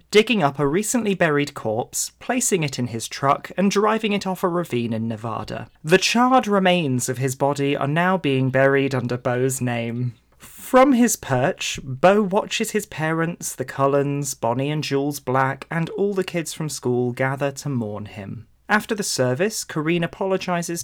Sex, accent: male, British